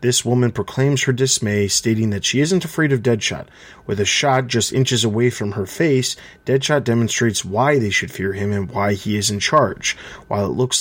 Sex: male